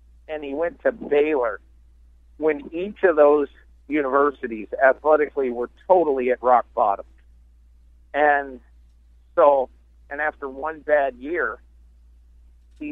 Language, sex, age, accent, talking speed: English, male, 50-69, American, 110 wpm